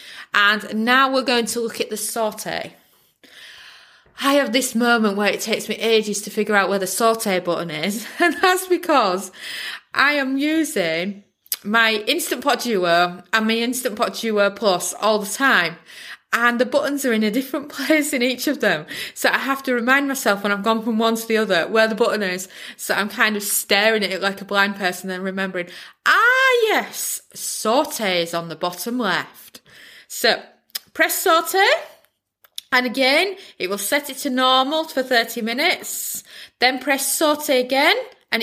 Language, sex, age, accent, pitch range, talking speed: English, female, 20-39, British, 200-275 Hz, 180 wpm